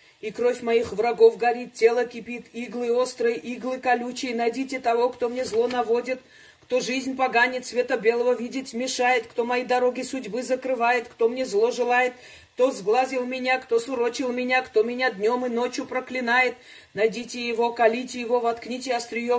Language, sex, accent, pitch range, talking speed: Russian, female, native, 235-255 Hz, 160 wpm